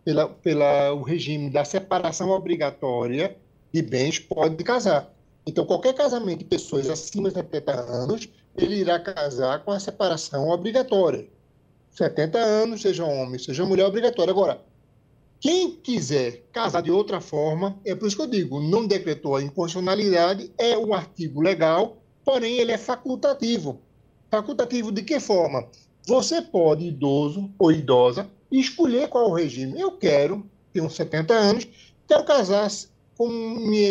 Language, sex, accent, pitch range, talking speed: Portuguese, male, Brazilian, 155-225 Hz, 145 wpm